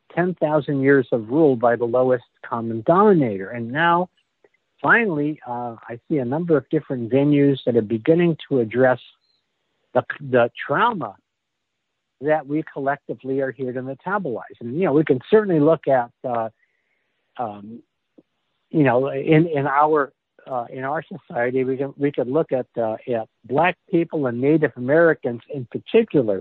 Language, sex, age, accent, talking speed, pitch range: English, male, 60-79, American, 155 wpm, 125-160 Hz